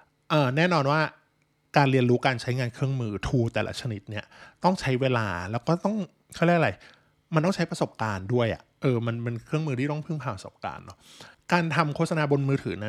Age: 20-39